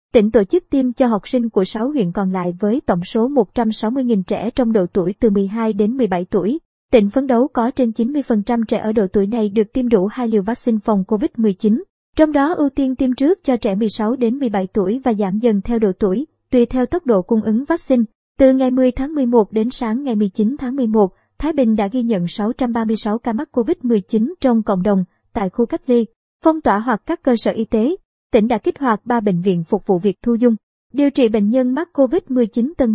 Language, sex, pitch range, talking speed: Vietnamese, male, 210-255 Hz, 225 wpm